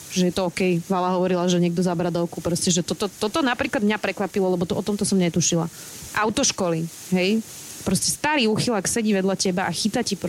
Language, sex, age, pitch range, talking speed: Slovak, female, 30-49, 180-210 Hz, 180 wpm